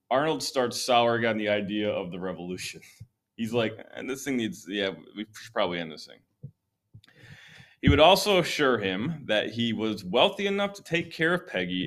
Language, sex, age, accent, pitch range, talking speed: English, male, 30-49, American, 105-135 Hz, 185 wpm